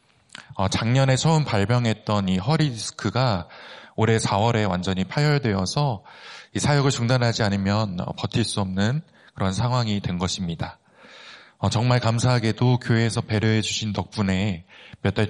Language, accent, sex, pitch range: Korean, native, male, 100-125 Hz